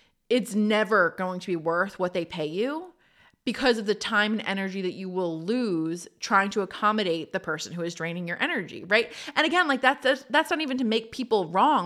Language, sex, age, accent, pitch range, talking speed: English, female, 20-39, American, 180-230 Hz, 215 wpm